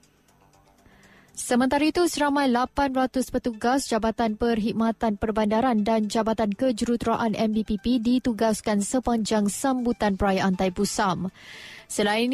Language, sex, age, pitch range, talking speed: Malay, female, 20-39, 215-255 Hz, 90 wpm